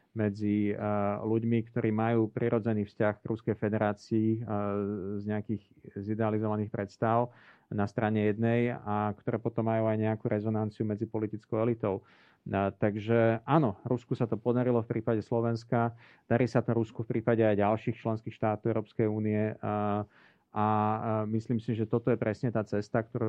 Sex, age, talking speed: male, 40-59, 150 wpm